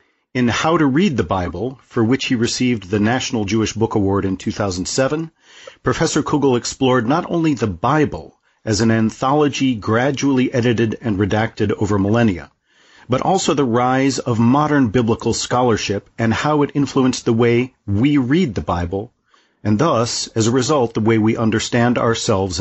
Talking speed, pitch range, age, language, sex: 160 wpm, 110-135 Hz, 40-59, English, male